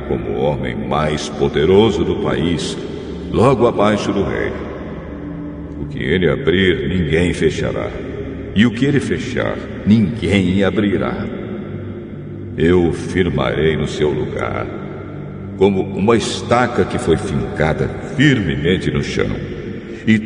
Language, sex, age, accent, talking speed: Portuguese, male, 60-79, Brazilian, 115 wpm